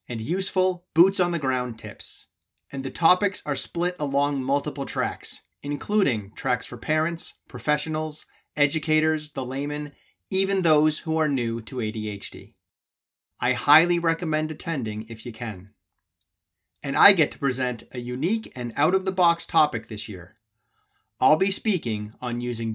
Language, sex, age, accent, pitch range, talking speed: English, male, 30-49, American, 110-155 Hz, 135 wpm